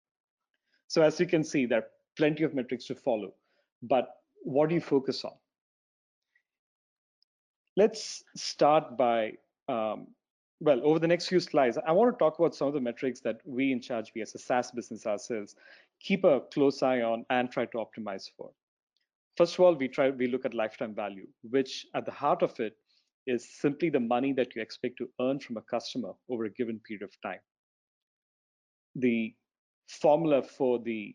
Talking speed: 180 wpm